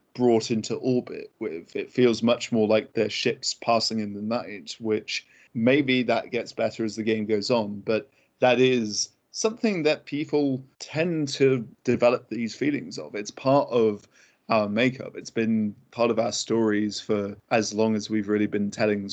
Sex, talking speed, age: male, 175 wpm, 20-39